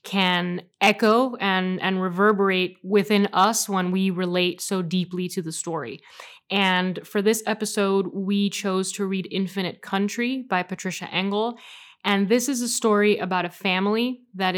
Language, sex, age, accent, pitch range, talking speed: English, female, 10-29, American, 190-220 Hz, 150 wpm